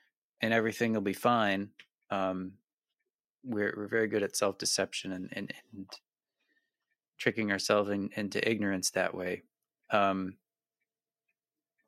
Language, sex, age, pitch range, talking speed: English, male, 30-49, 100-130 Hz, 120 wpm